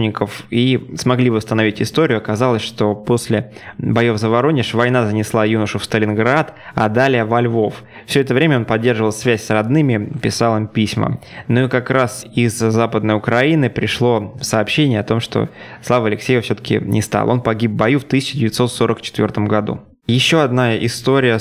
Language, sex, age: Russian, male, 20-39